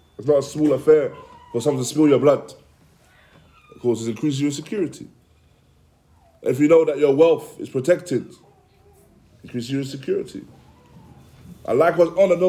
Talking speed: 155 wpm